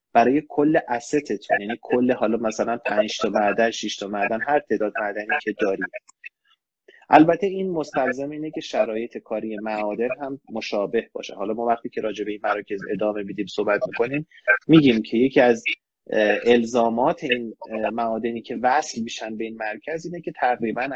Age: 30-49